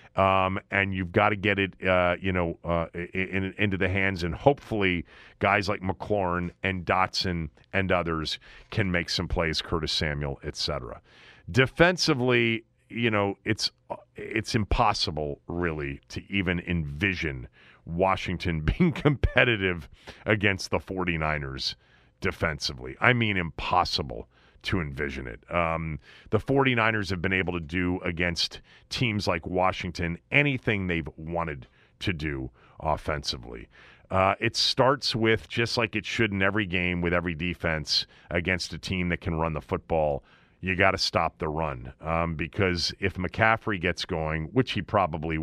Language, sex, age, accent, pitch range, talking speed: English, male, 40-59, American, 80-100 Hz, 145 wpm